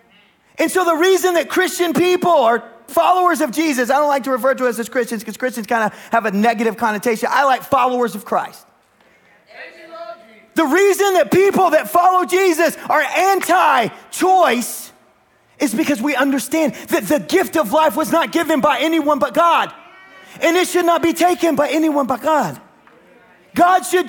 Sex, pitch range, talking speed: male, 215-315 Hz, 175 wpm